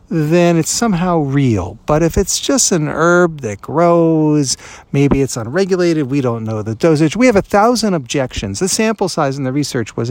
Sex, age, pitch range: male, 50-69, 105-155 Hz